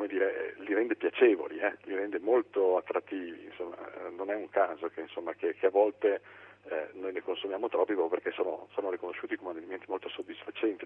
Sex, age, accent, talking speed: male, 40-59, native, 180 wpm